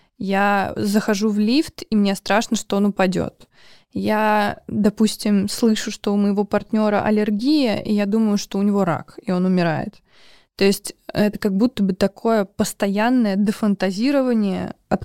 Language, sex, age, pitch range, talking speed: Russian, female, 20-39, 185-215 Hz, 150 wpm